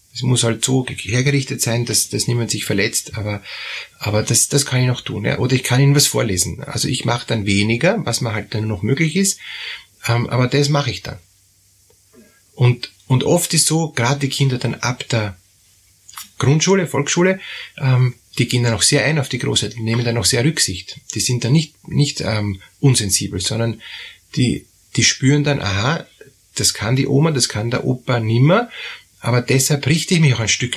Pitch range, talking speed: 110-140 Hz, 205 wpm